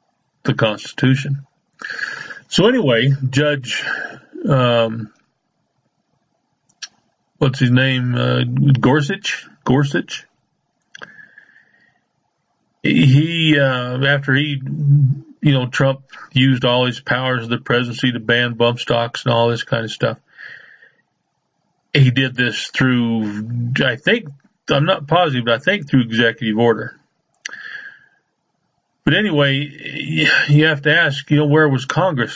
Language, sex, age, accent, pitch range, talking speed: English, male, 40-59, American, 115-140 Hz, 115 wpm